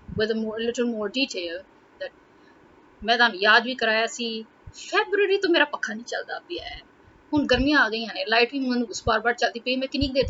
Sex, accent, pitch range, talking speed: female, Indian, 210-290 Hz, 175 wpm